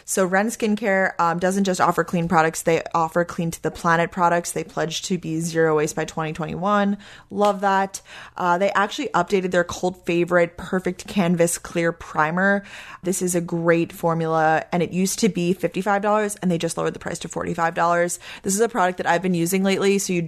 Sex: female